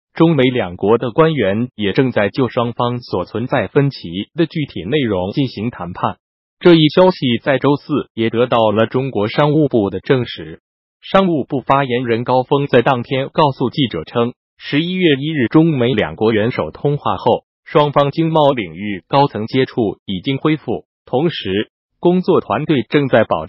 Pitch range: 110-150 Hz